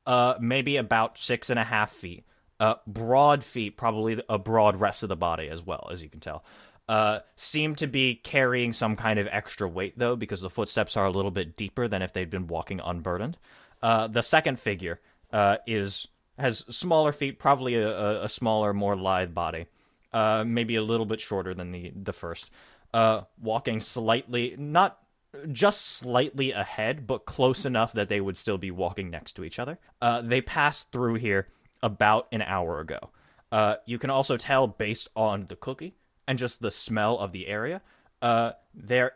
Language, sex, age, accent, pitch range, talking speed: English, male, 20-39, American, 100-125 Hz, 185 wpm